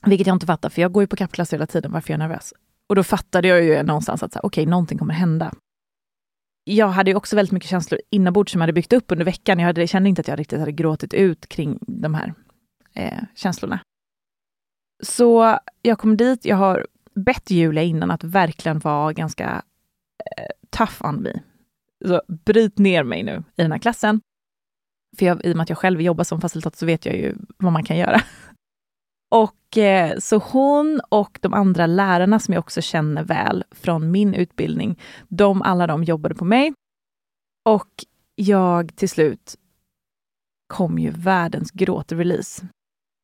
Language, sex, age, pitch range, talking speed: Swedish, female, 20-39, 170-210 Hz, 185 wpm